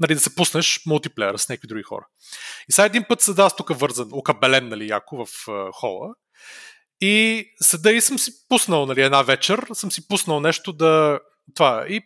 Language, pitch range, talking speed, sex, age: Bulgarian, 150-210 Hz, 185 wpm, male, 30-49